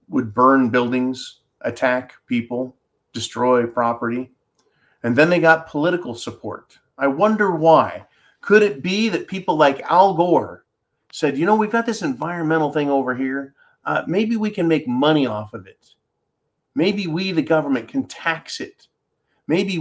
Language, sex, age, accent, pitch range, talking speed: English, male, 40-59, American, 125-160 Hz, 155 wpm